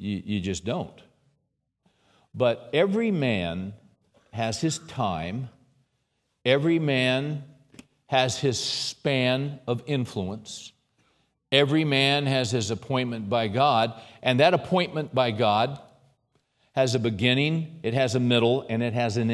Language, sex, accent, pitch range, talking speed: English, male, American, 120-145 Hz, 120 wpm